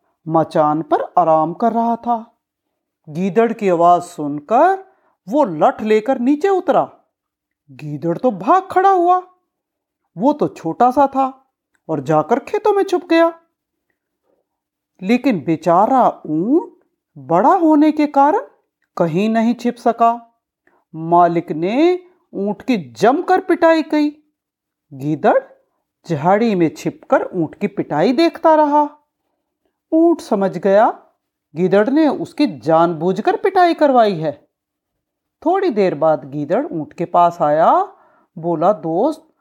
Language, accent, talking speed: Hindi, native, 120 wpm